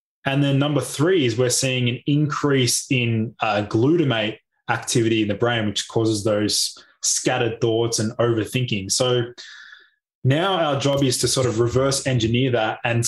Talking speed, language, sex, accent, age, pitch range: 160 wpm, English, male, Australian, 20-39, 115-135 Hz